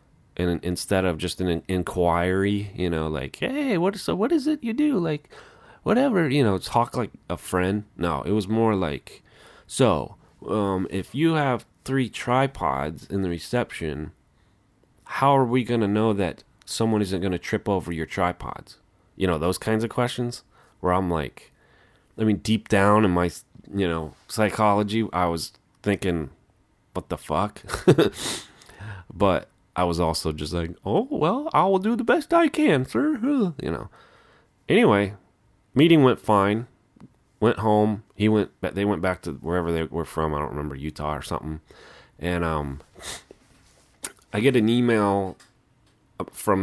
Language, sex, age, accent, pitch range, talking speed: English, male, 30-49, American, 85-115 Hz, 160 wpm